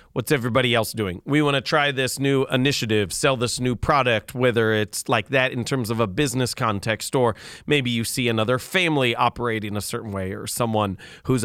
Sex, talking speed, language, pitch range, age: male, 200 wpm, English, 115-150 Hz, 30-49